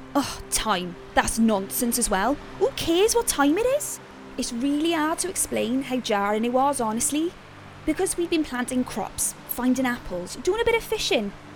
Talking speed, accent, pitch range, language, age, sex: 175 wpm, British, 230-320 Hz, English, 20-39, female